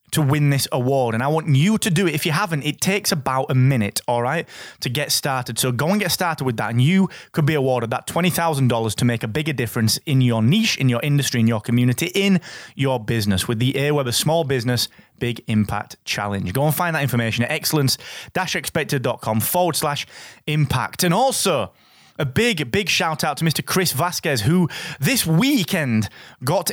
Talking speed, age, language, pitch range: 200 wpm, 20-39, English, 125-165 Hz